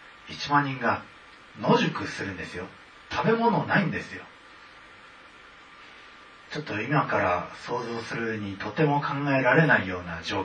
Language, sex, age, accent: Japanese, male, 40-59, native